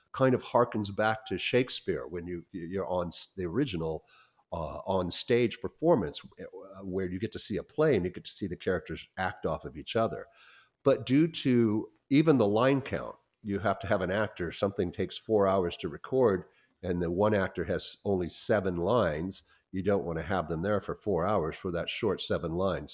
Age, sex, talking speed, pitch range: 50-69, male, 200 wpm, 85-110 Hz